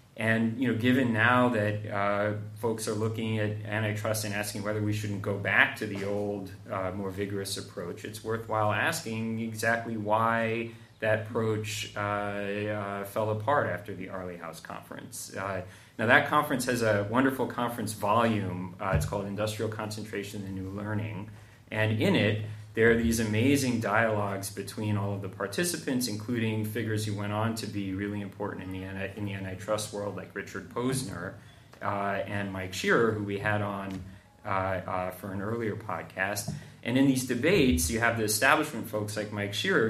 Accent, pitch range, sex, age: American, 100-115 Hz, male, 30-49